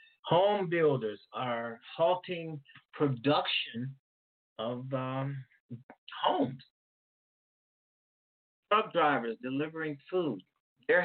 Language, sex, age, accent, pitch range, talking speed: English, male, 30-49, American, 115-145 Hz, 65 wpm